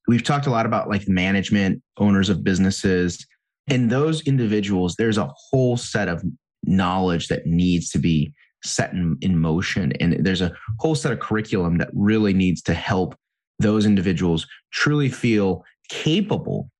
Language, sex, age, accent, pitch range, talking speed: English, male, 30-49, American, 90-120 Hz, 155 wpm